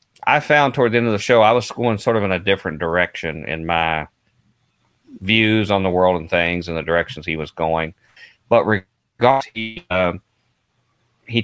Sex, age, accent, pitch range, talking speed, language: male, 40-59, American, 85-110 Hz, 180 wpm, English